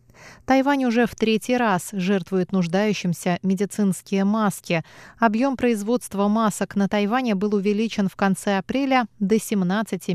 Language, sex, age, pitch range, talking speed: Russian, female, 20-39, 180-230 Hz, 125 wpm